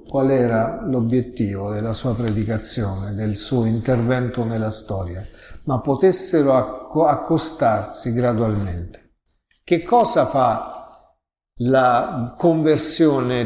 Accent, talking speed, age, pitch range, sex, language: native, 90 wpm, 50-69, 115-150 Hz, male, Italian